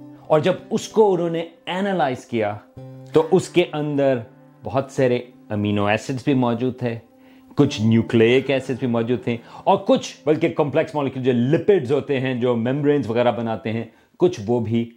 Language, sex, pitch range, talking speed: Urdu, male, 120-160 Hz, 170 wpm